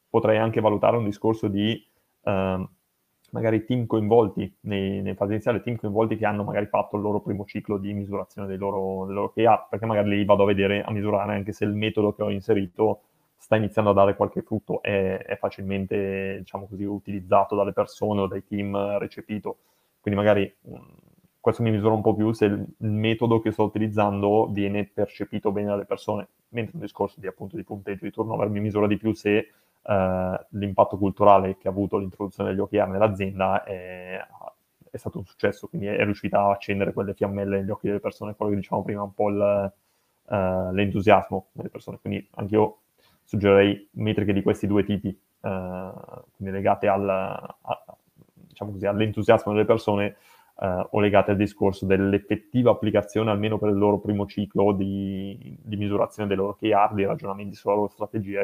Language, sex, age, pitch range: Italian, male, 20-39, 100-105 Hz